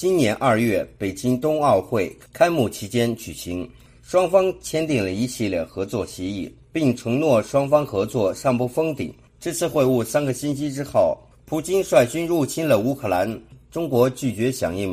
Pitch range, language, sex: 115-150 Hz, Chinese, male